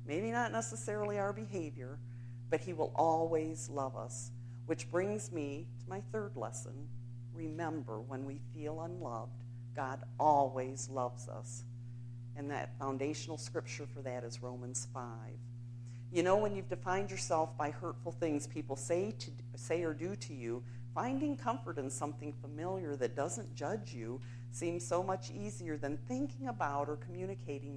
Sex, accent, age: female, American, 50-69